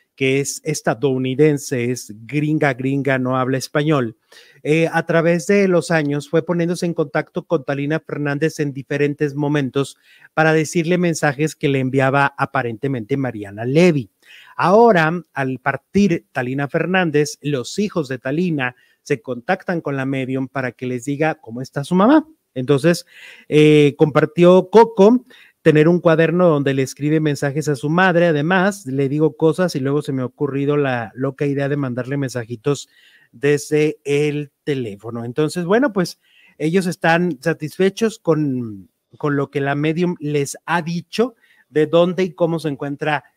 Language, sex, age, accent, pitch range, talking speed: Italian, male, 40-59, Mexican, 135-170 Hz, 150 wpm